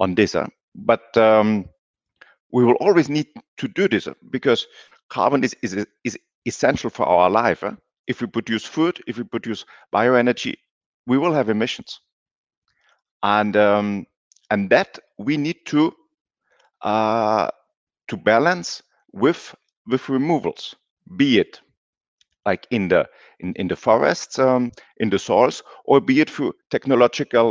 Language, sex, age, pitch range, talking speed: English, male, 50-69, 105-130 Hz, 145 wpm